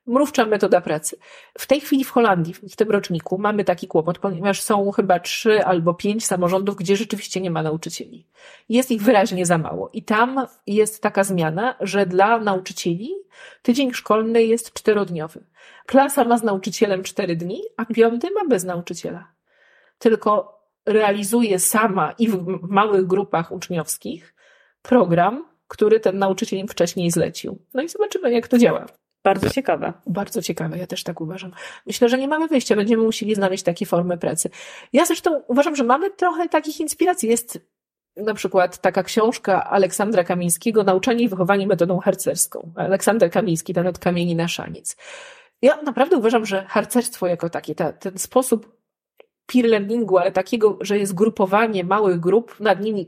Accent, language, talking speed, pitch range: native, Polish, 160 wpm, 185-240 Hz